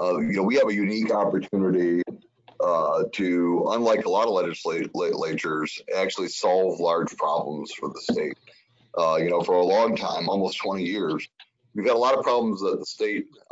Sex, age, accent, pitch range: male, 30-49, American, 95-125 Hz